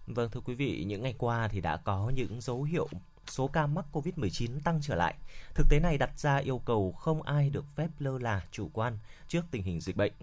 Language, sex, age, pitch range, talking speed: Vietnamese, male, 20-39, 110-150 Hz, 235 wpm